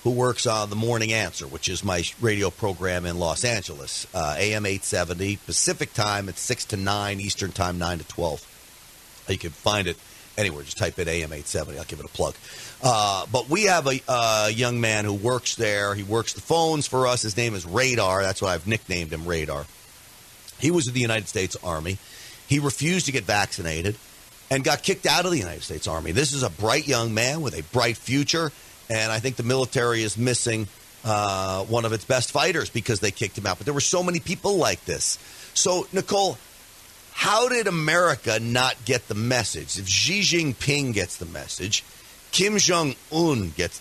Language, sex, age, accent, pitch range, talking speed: English, male, 40-59, American, 95-135 Hz, 200 wpm